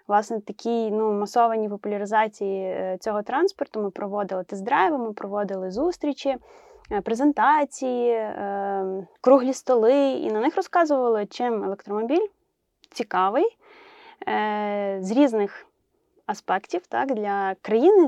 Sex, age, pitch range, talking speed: female, 20-39, 205-320 Hz, 90 wpm